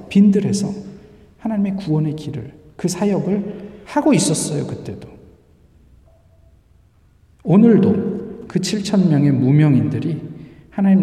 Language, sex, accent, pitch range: Korean, male, native, 125-175 Hz